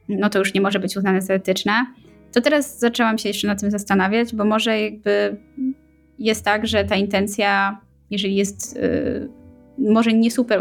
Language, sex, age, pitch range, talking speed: Polish, female, 20-39, 195-225 Hz, 175 wpm